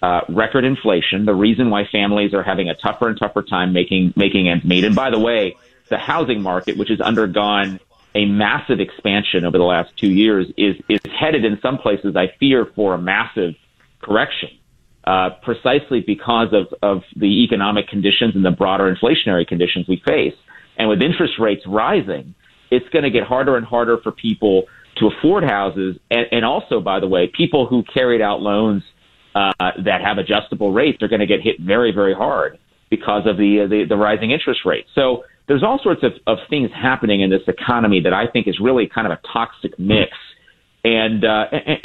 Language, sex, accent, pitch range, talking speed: English, male, American, 100-130 Hz, 195 wpm